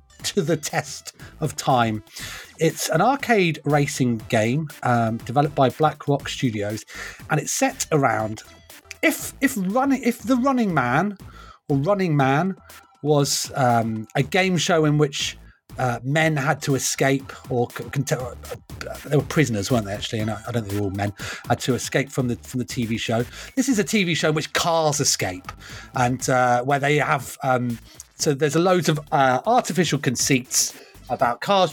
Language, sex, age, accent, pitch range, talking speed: English, male, 30-49, British, 120-155 Hz, 180 wpm